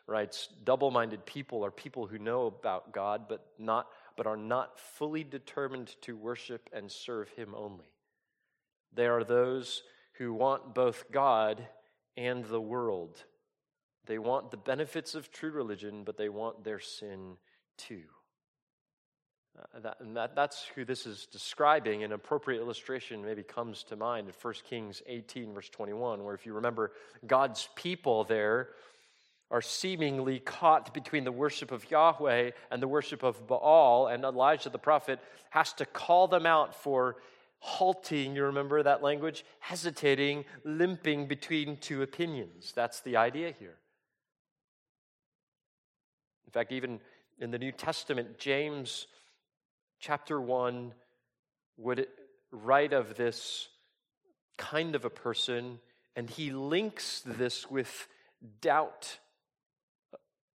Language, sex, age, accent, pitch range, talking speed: English, male, 30-49, American, 115-150 Hz, 130 wpm